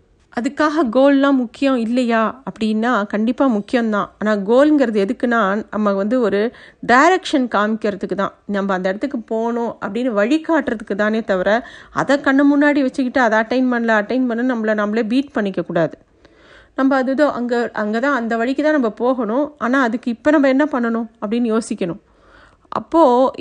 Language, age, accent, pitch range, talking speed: Tamil, 50-69, native, 210-275 Hz, 145 wpm